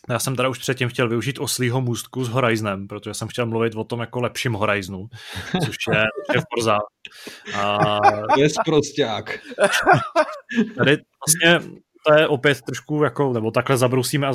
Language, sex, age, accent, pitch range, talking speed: Czech, male, 20-39, native, 110-125 Hz, 150 wpm